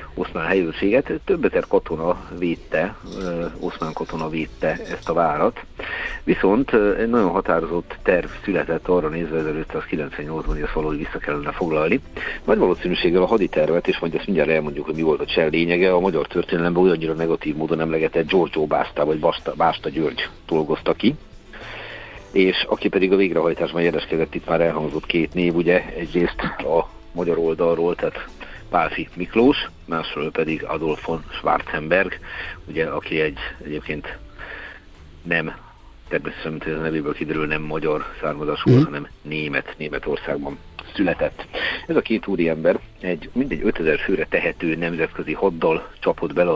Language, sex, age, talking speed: Hungarian, male, 50-69, 140 wpm